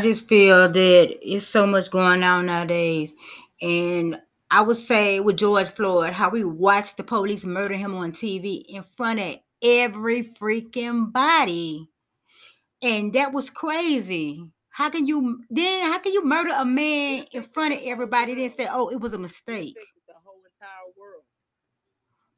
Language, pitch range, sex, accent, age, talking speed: English, 205-290 Hz, female, American, 30-49, 165 wpm